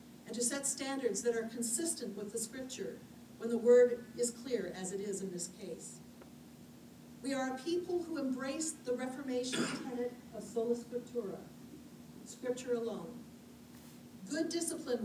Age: 50-69